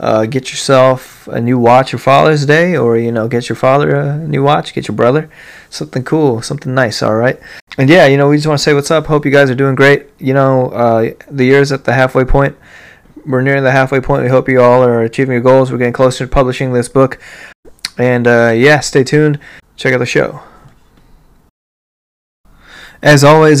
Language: English